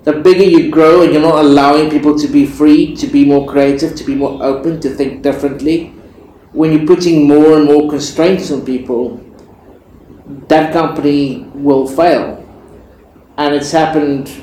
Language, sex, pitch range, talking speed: English, male, 140-160 Hz, 160 wpm